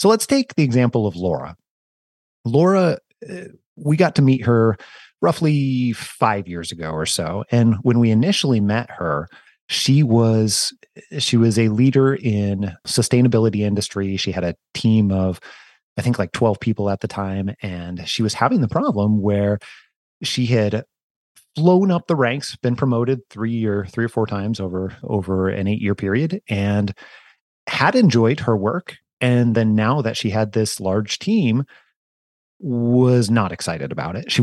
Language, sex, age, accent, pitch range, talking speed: English, male, 30-49, American, 100-135 Hz, 165 wpm